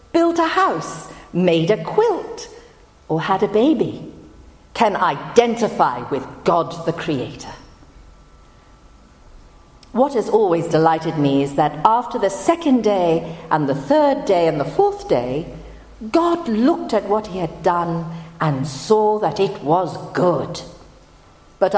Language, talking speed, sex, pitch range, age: English, 135 wpm, female, 145-240 Hz, 50-69